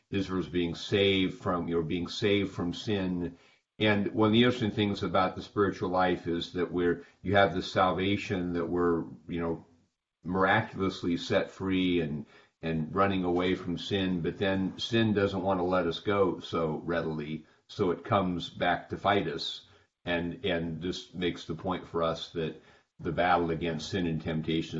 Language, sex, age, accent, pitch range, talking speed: English, male, 50-69, American, 85-100 Hz, 180 wpm